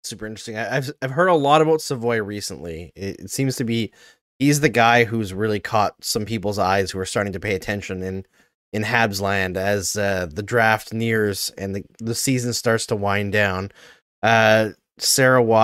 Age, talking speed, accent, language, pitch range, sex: 20-39, 190 wpm, American, English, 100-125 Hz, male